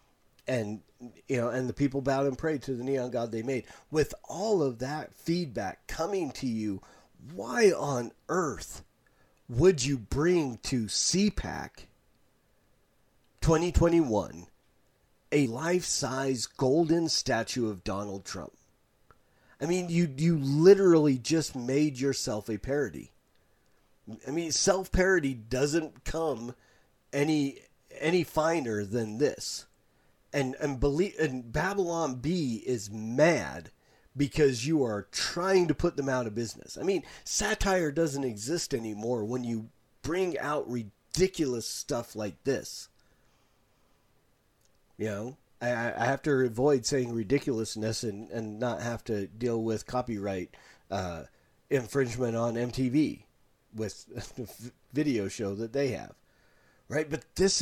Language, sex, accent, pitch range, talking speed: English, male, American, 115-155 Hz, 125 wpm